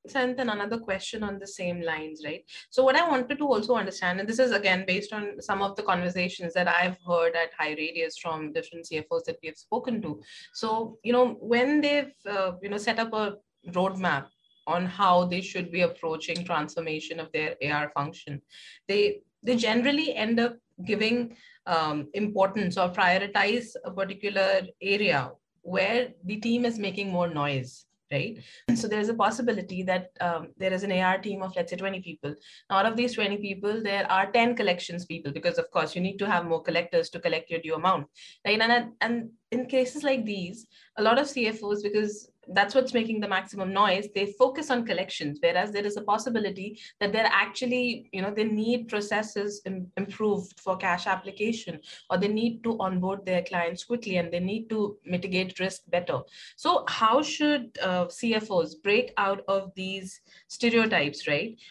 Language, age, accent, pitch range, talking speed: English, 30-49, Indian, 180-230 Hz, 180 wpm